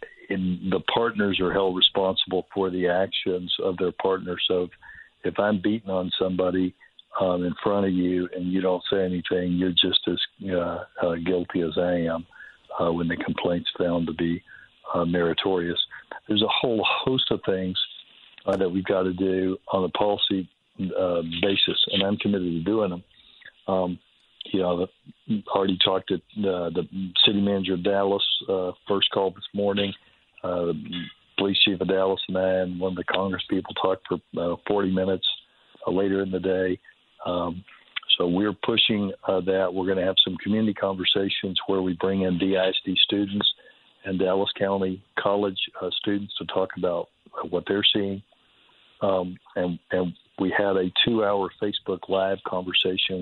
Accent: American